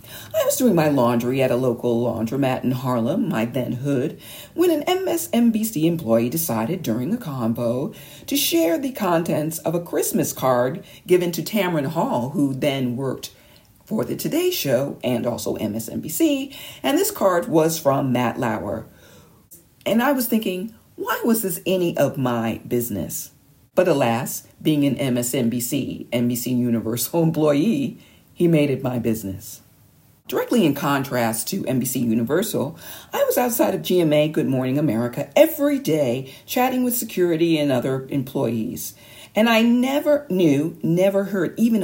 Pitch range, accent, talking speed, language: 120-185 Hz, American, 150 wpm, English